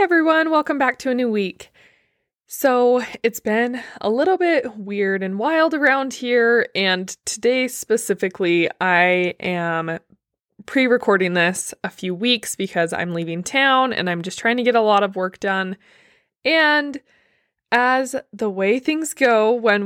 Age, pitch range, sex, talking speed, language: 20-39, 190-245 Hz, female, 150 wpm, English